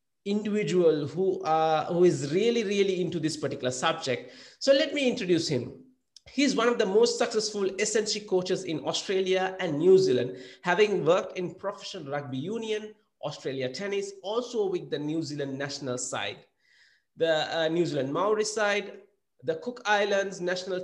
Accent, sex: Indian, male